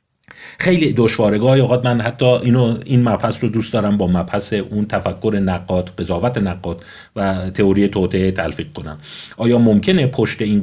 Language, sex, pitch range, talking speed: Persian, male, 95-125 Hz, 160 wpm